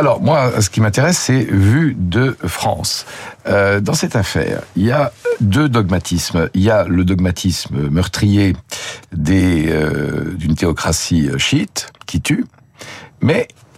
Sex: male